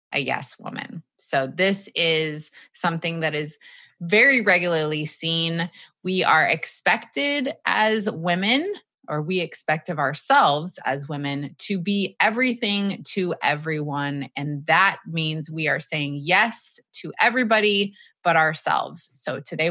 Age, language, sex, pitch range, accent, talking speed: 20-39, English, female, 160-210 Hz, American, 130 wpm